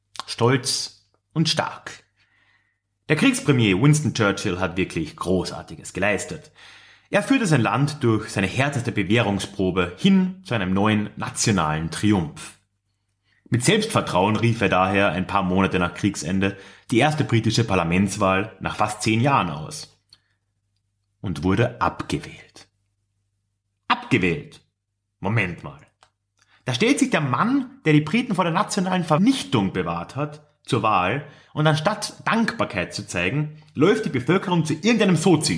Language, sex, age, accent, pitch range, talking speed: German, male, 30-49, German, 100-155 Hz, 130 wpm